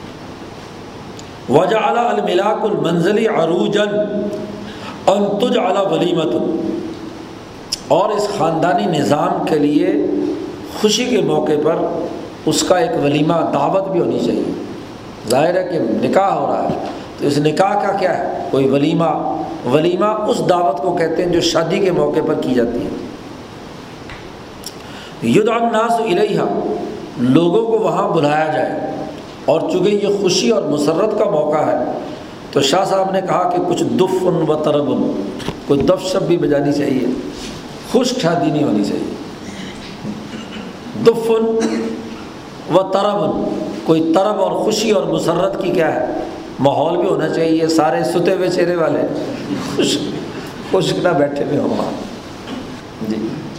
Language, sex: Urdu, male